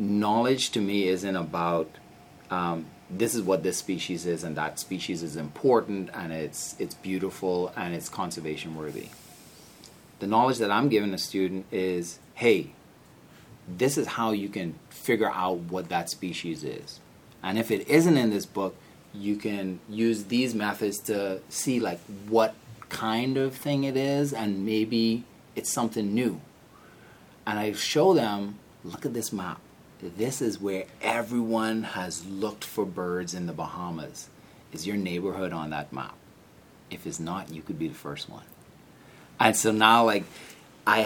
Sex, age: male, 30-49